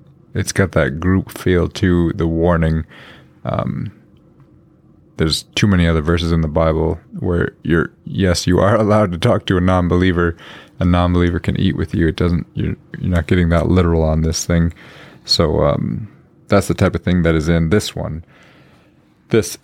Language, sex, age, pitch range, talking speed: English, male, 30-49, 85-110 Hz, 175 wpm